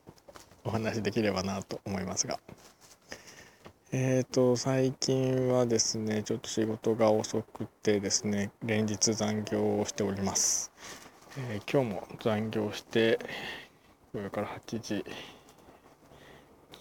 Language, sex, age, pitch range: Japanese, male, 20-39, 105-115 Hz